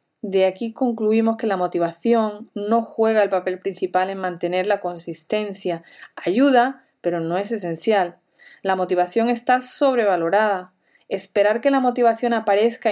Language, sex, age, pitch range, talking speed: English, female, 30-49, 185-240 Hz, 135 wpm